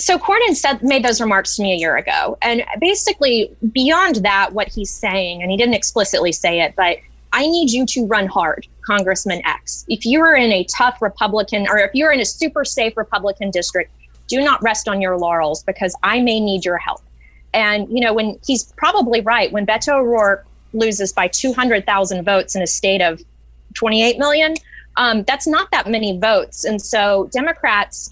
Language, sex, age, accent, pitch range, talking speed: English, female, 20-39, American, 185-250 Hz, 190 wpm